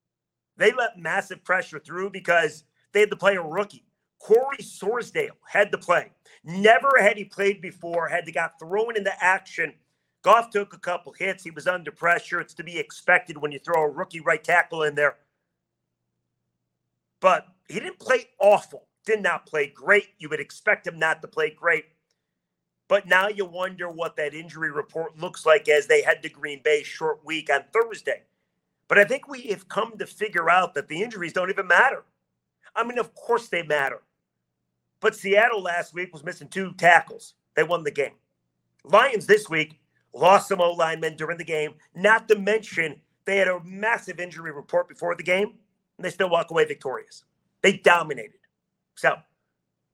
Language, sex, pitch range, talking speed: English, male, 155-205 Hz, 180 wpm